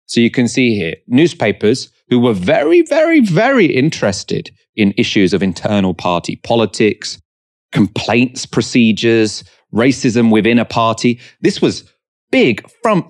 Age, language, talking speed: 30-49, English, 130 wpm